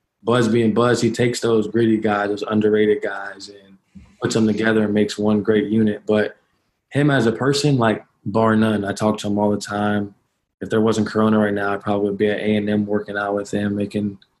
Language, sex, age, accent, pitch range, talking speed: English, male, 20-39, American, 105-115 Hz, 220 wpm